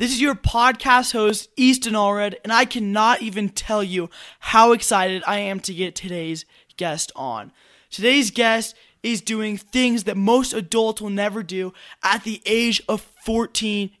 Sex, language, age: male, English, 20-39